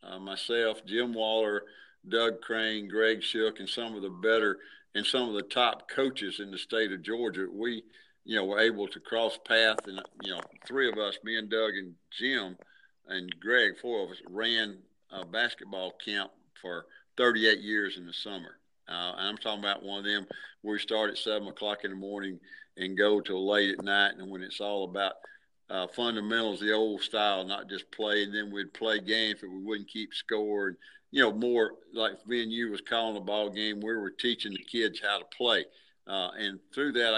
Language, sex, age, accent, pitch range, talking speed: English, male, 50-69, American, 100-115 Hz, 210 wpm